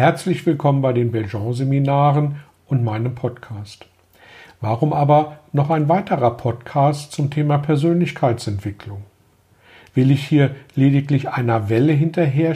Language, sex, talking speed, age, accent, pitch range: German, male, 115 wpm, 50-69, German, 120-160 Hz